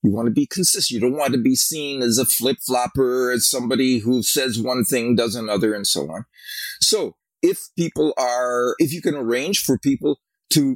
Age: 50-69